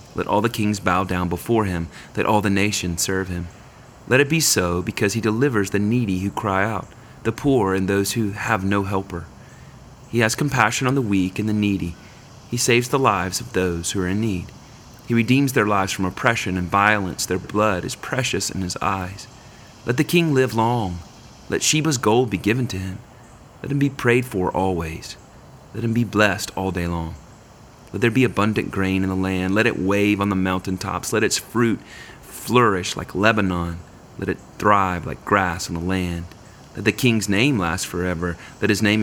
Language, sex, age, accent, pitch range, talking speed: English, male, 30-49, American, 90-115 Hz, 200 wpm